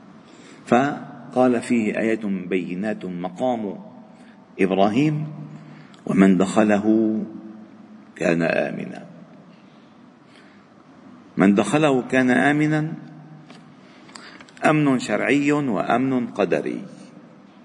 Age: 50-69